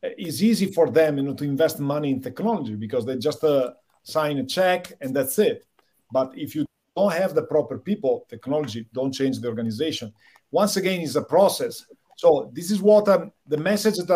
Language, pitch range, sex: English, 140-185 Hz, male